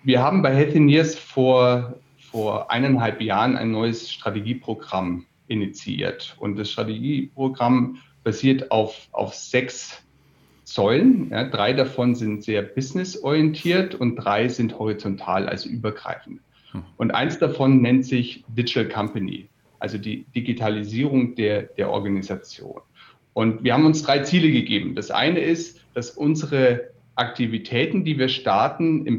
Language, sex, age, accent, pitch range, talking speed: German, male, 40-59, German, 110-135 Hz, 125 wpm